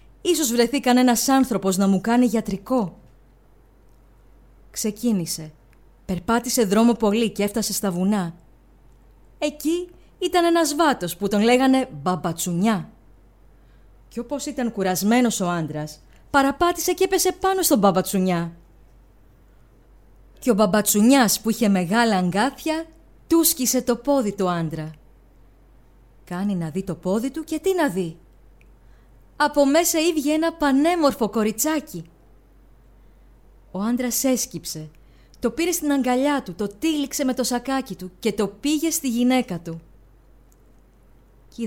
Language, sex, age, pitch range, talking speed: Greek, female, 20-39, 180-265 Hz, 125 wpm